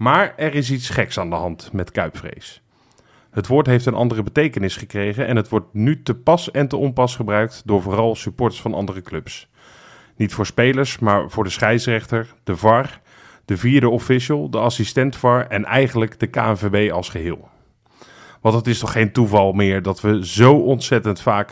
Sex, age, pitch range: male, 30-49, 105-130 Hz